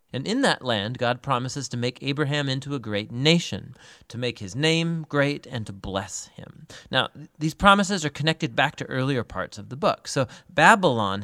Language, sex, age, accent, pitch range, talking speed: English, male, 40-59, American, 110-155 Hz, 190 wpm